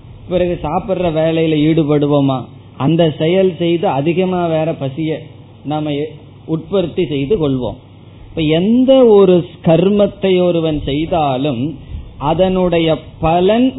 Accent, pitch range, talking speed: native, 140-185 Hz, 90 wpm